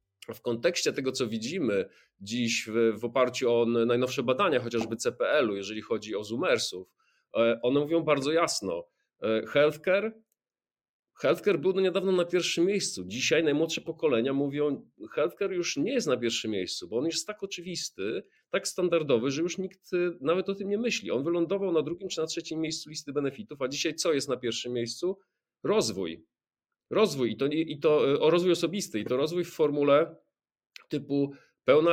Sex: male